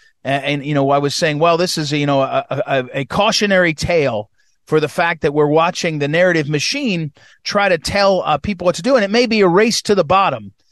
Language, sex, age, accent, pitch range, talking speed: English, male, 40-59, American, 160-230 Hz, 245 wpm